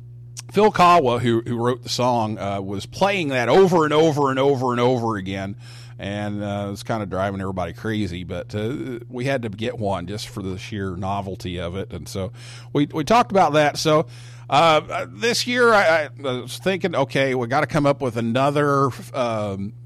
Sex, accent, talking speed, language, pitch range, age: male, American, 200 wpm, English, 120-150 Hz, 50-69